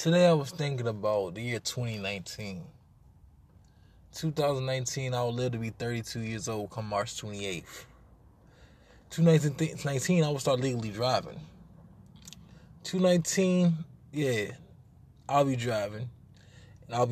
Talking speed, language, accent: 115 wpm, English, American